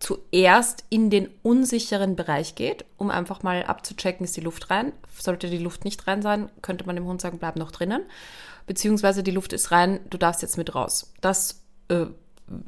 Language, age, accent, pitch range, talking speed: German, 20-39, German, 160-195 Hz, 190 wpm